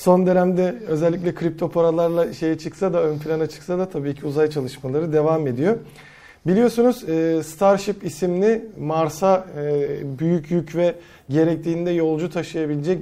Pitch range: 150-190 Hz